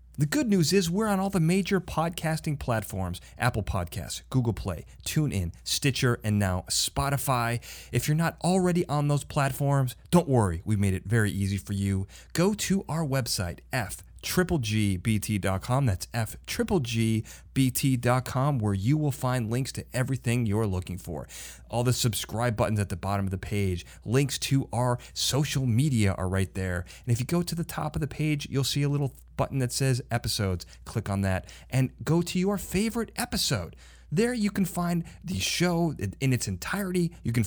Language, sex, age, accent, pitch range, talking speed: English, male, 30-49, American, 100-150 Hz, 175 wpm